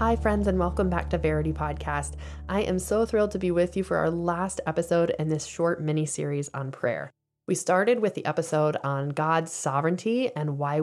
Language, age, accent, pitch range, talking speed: English, 10-29, American, 150-180 Hz, 200 wpm